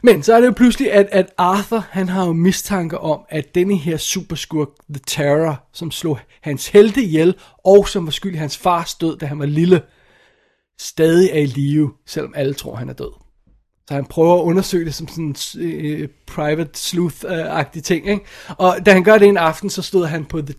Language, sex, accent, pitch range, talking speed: Danish, male, native, 155-190 Hz, 215 wpm